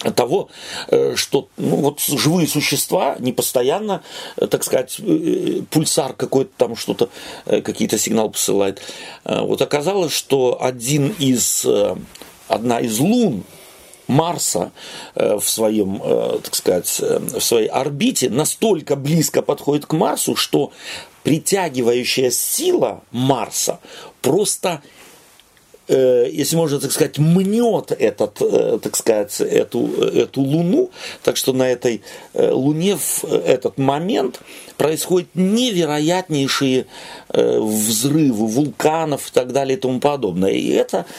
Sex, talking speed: male, 105 wpm